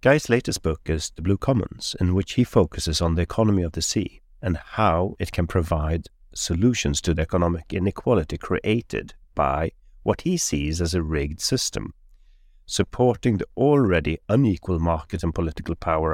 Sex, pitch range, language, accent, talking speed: male, 80-100 Hz, English, Swedish, 165 wpm